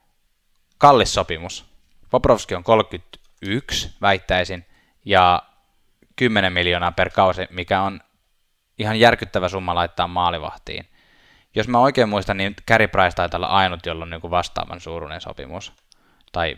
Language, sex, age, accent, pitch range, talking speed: Finnish, male, 10-29, native, 90-105 Hz, 125 wpm